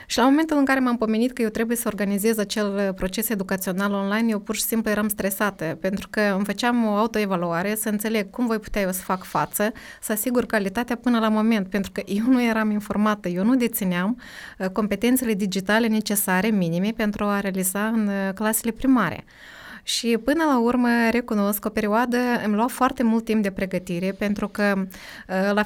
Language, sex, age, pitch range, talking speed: Romanian, female, 20-39, 195-230 Hz, 185 wpm